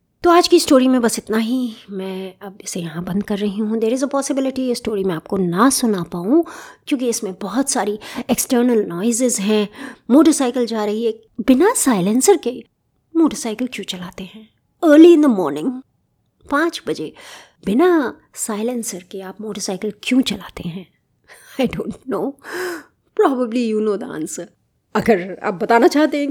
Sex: female